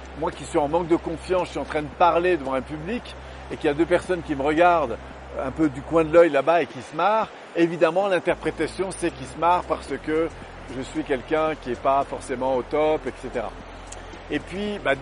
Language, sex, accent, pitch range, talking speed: French, male, French, 150-200 Hz, 230 wpm